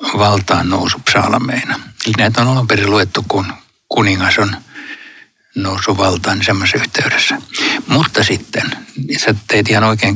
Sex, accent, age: male, native, 60-79